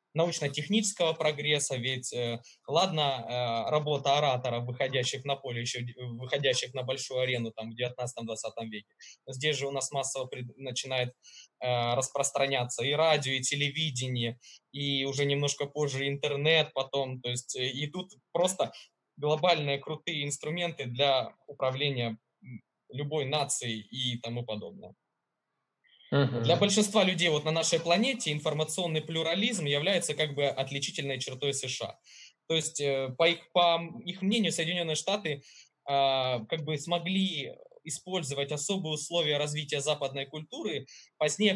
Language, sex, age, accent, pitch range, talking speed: Russian, male, 20-39, native, 135-160 Hz, 120 wpm